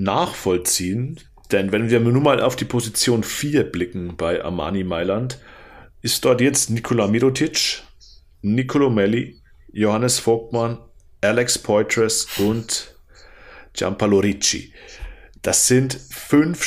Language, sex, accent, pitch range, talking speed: German, male, German, 100-120 Hz, 110 wpm